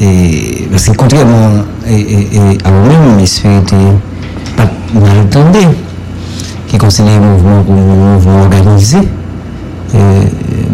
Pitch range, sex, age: 95-125 Hz, male, 60-79